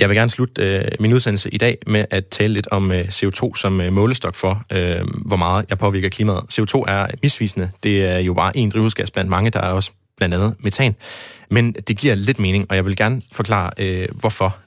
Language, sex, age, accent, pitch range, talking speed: Danish, male, 30-49, native, 95-115 Hz, 205 wpm